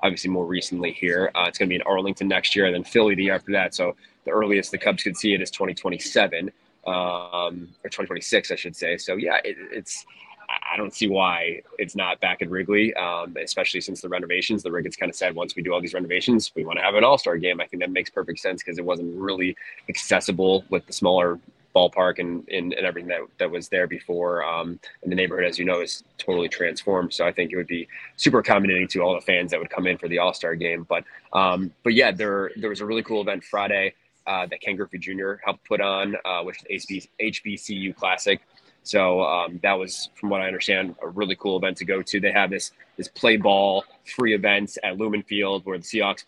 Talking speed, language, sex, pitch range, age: 230 wpm, English, male, 90-100 Hz, 20-39